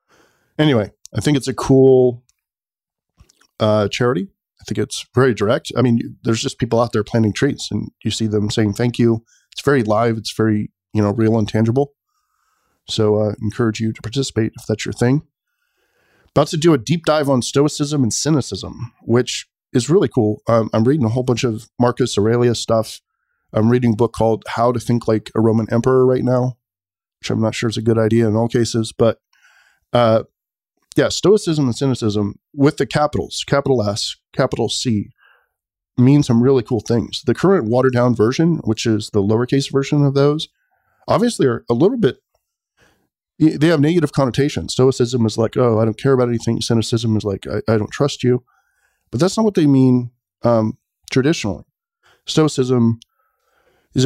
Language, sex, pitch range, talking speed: English, male, 110-140 Hz, 180 wpm